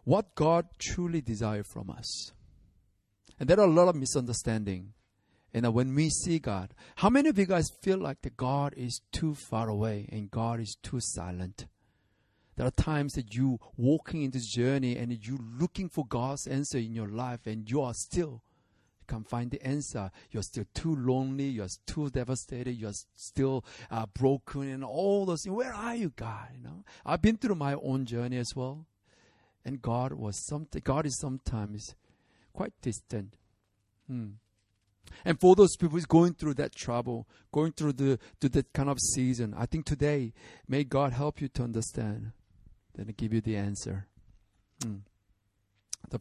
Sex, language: male, English